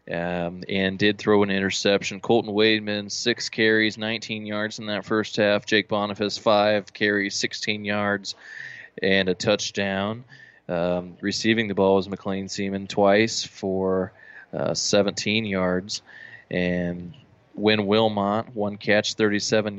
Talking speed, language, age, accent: 130 wpm, English, 20-39, American